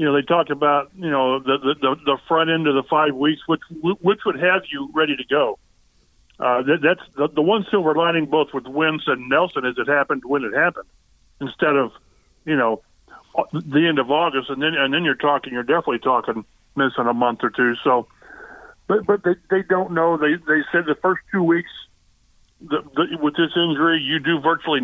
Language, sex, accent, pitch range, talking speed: English, male, American, 140-170 Hz, 210 wpm